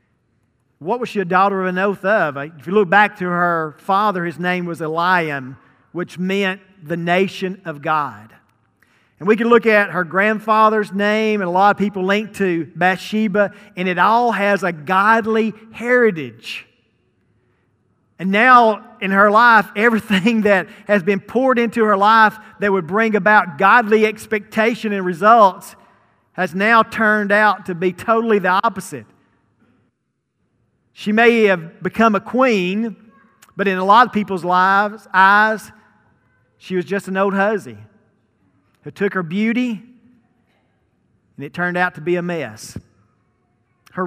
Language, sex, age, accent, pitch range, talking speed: English, male, 40-59, American, 155-215 Hz, 150 wpm